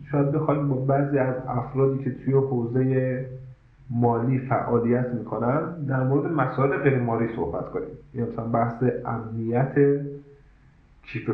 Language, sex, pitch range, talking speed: Persian, male, 105-135 Hz, 120 wpm